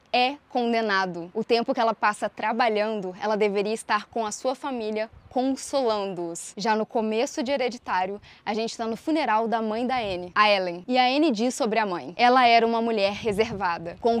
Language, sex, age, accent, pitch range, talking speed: Portuguese, female, 10-29, Brazilian, 210-255 Hz, 190 wpm